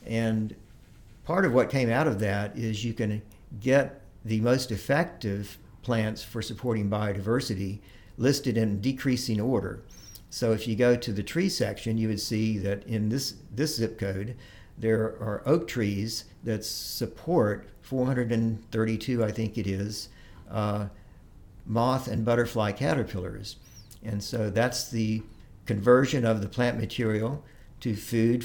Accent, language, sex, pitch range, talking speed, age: American, English, male, 105-120 Hz, 140 wpm, 50-69